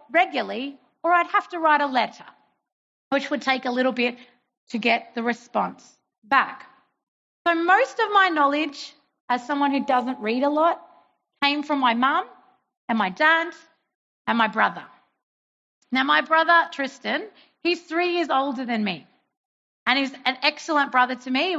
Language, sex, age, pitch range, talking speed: English, female, 40-59, 245-320 Hz, 165 wpm